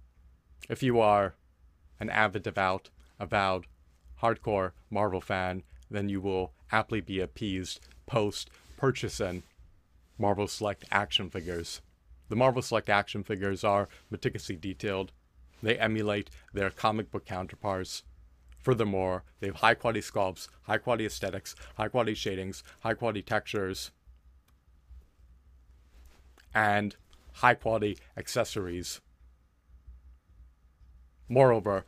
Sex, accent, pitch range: male, American, 70-105 Hz